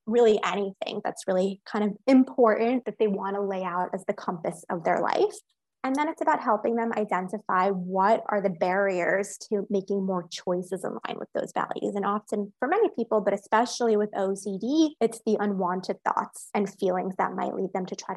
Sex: female